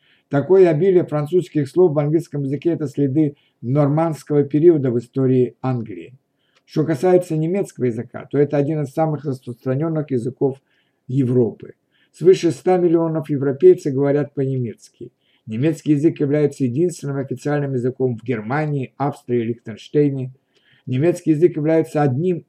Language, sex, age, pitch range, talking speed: Russian, male, 50-69, 125-155 Hz, 125 wpm